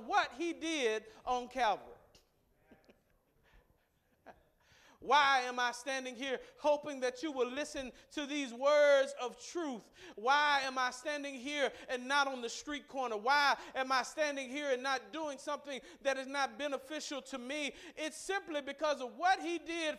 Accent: American